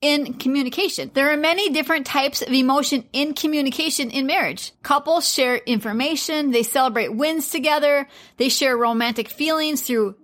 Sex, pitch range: female, 250-300 Hz